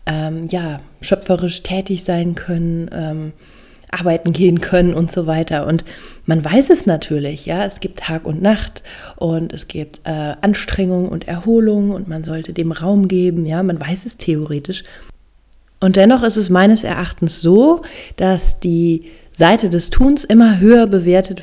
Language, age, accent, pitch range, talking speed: German, 30-49, German, 165-190 Hz, 160 wpm